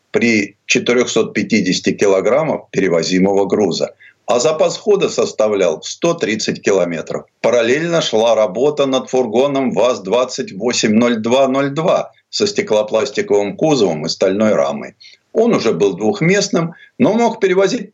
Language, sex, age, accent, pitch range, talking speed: Russian, male, 50-69, native, 130-190 Hz, 100 wpm